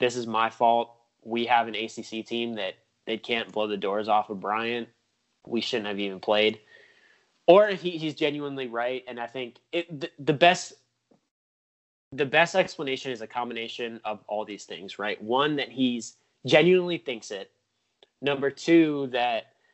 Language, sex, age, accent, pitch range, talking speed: English, male, 20-39, American, 110-130 Hz, 165 wpm